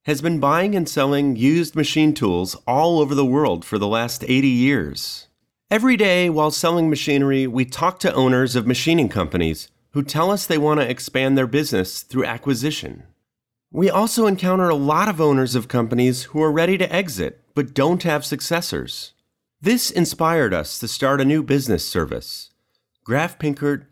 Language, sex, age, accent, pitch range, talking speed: English, male, 30-49, American, 125-170 Hz, 175 wpm